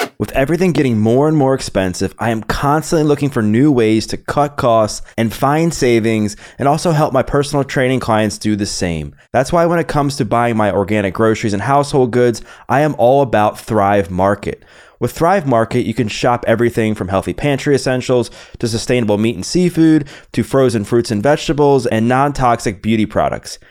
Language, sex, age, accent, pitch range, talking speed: English, male, 20-39, American, 110-145 Hz, 185 wpm